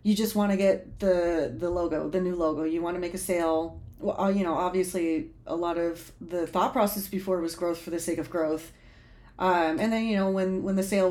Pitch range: 170-200 Hz